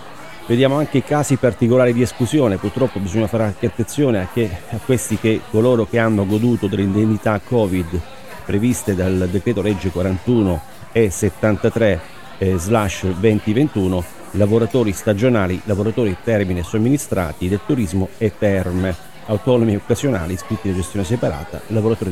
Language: Italian